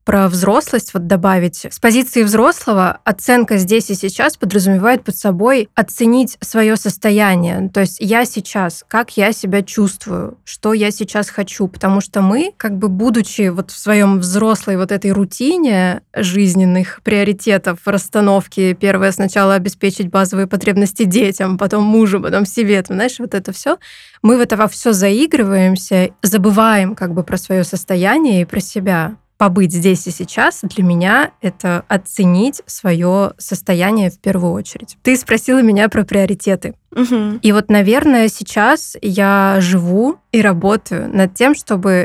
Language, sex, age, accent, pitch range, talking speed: Russian, female, 20-39, native, 185-215 Hz, 150 wpm